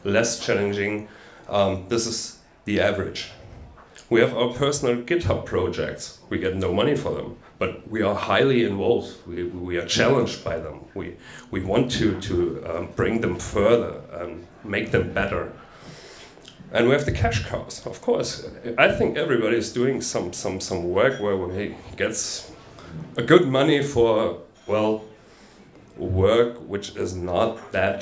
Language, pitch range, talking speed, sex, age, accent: English, 100-135 Hz, 155 wpm, male, 30-49, German